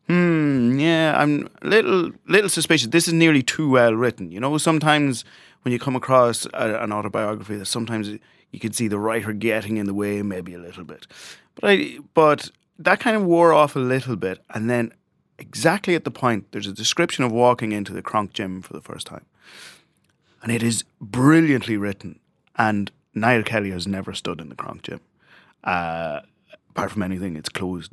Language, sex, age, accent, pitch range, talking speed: English, male, 30-49, British, 95-135 Hz, 190 wpm